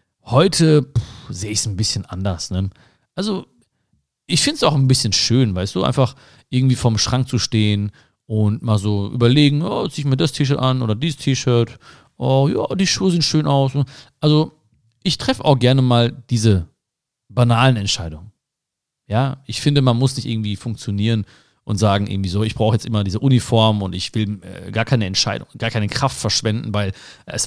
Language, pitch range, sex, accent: German, 110-140 Hz, male, German